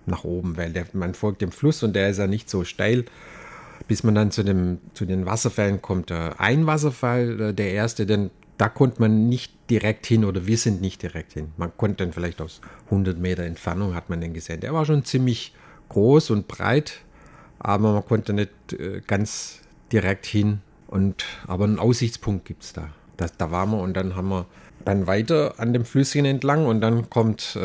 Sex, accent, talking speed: male, German, 195 wpm